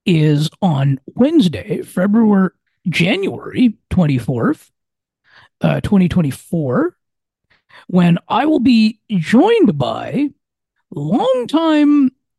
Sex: male